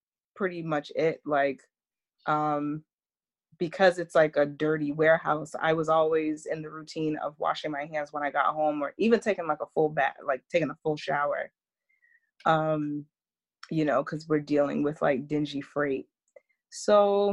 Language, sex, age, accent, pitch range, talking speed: English, female, 20-39, American, 150-175 Hz, 165 wpm